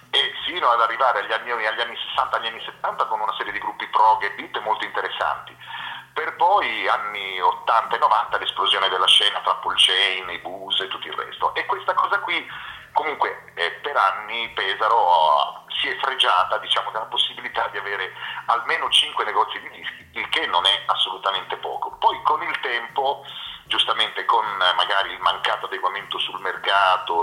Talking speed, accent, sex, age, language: 170 wpm, native, male, 40-59, Italian